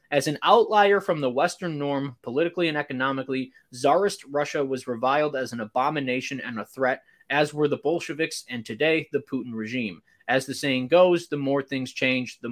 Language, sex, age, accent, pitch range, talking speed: English, male, 20-39, American, 125-175 Hz, 180 wpm